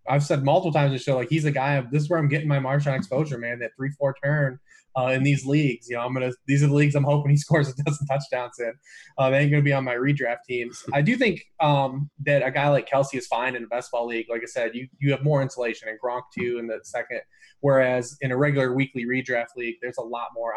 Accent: American